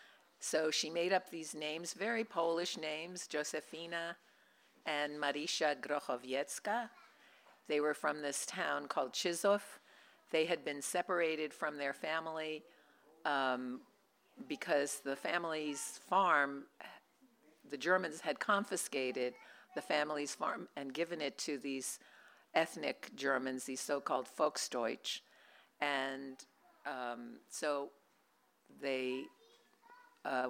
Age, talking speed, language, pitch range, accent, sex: 50-69, 105 wpm, English, 140-180 Hz, American, female